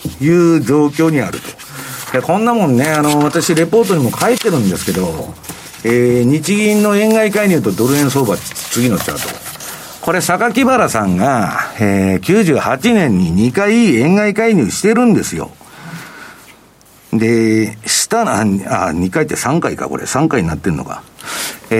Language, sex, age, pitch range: Japanese, male, 50-69, 120-190 Hz